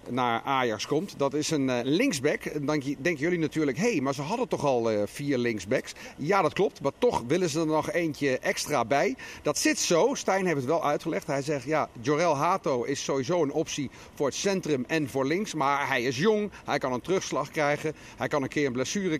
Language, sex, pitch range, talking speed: Dutch, male, 140-175 Hz, 220 wpm